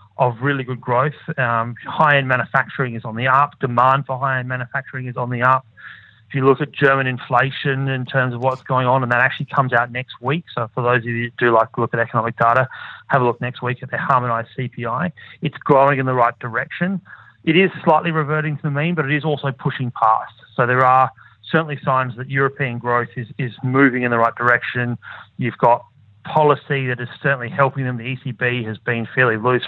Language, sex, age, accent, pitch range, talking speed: English, male, 30-49, Australian, 120-140 Hz, 220 wpm